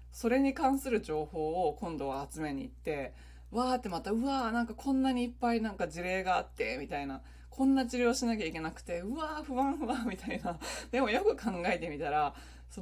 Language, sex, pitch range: Japanese, female, 155-255 Hz